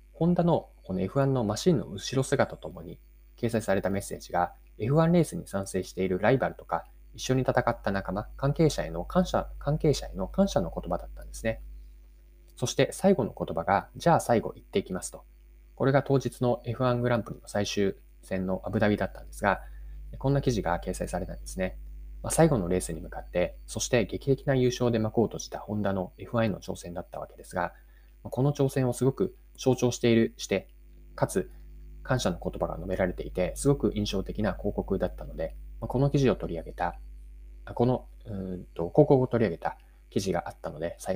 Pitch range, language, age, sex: 90-135 Hz, Japanese, 20-39, male